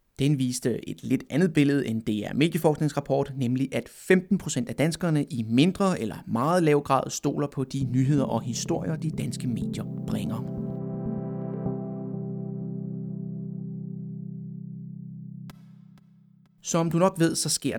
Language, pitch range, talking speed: Danish, 120-165 Hz, 125 wpm